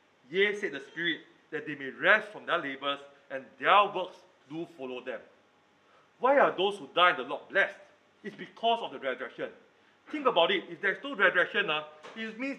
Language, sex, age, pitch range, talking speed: English, male, 40-59, 155-225 Hz, 195 wpm